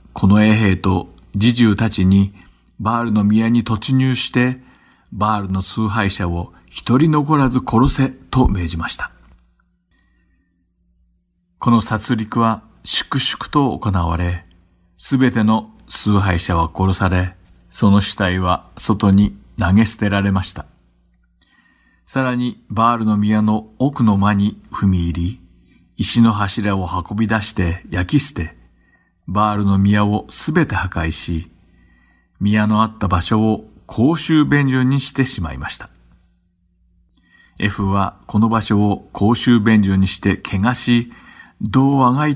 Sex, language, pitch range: male, Japanese, 90-115 Hz